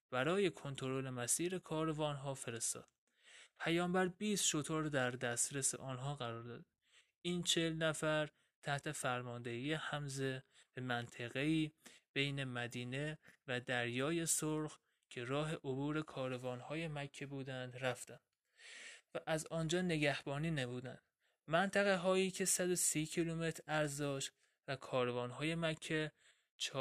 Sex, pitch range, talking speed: male, 130-160 Hz, 115 wpm